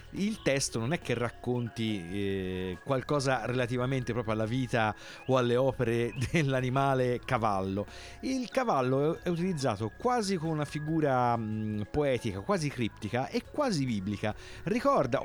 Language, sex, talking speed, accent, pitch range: Italian, male, 130 wpm, native, 110-155 Hz